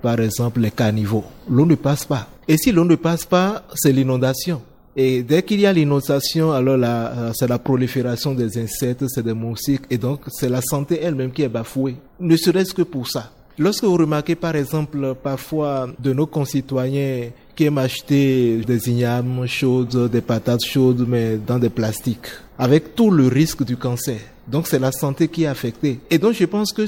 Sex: male